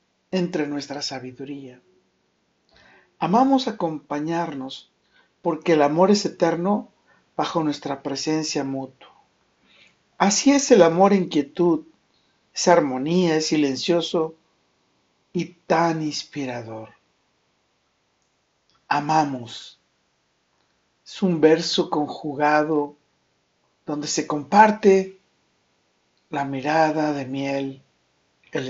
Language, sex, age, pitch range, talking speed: Spanish, male, 60-79, 140-180 Hz, 85 wpm